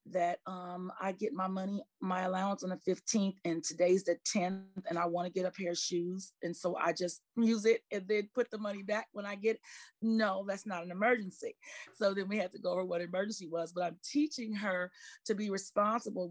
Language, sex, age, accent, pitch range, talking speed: English, female, 40-59, American, 175-215 Hz, 220 wpm